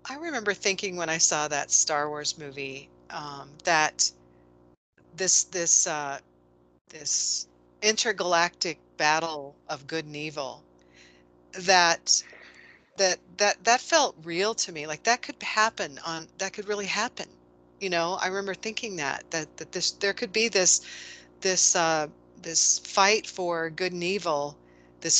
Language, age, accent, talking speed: English, 40-59, American, 145 wpm